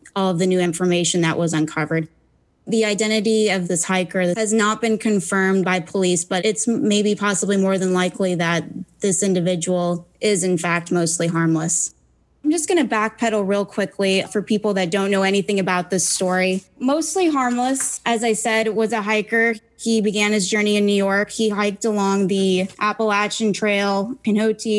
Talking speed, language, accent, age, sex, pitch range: 175 wpm, English, American, 20-39, female, 185-215 Hz